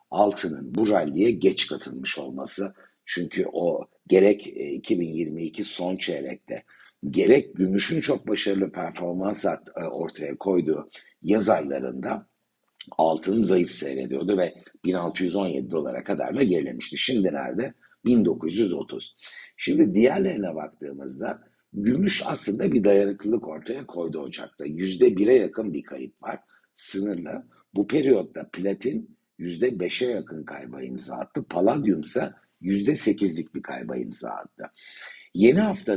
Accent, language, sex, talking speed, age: native, Turkish, male, 110 wpm, 60-79